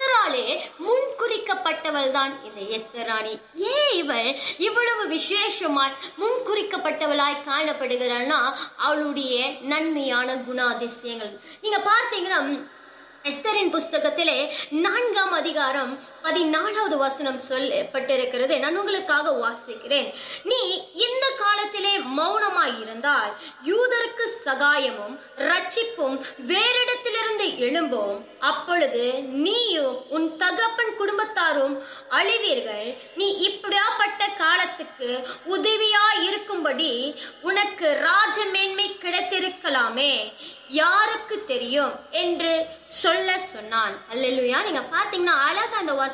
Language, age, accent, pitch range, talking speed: Tamil, 20-39, native, 275-410 Hz, 40 wpm